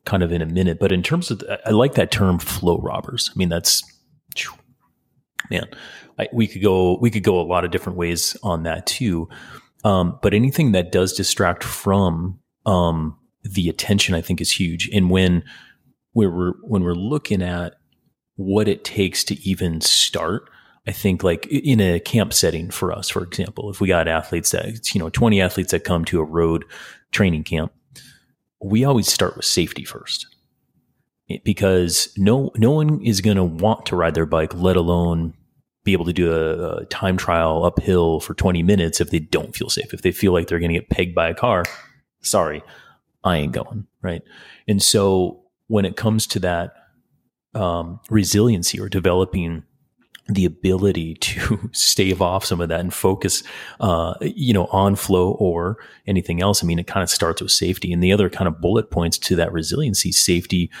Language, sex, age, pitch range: English, male, 30-49, 85-100 Hz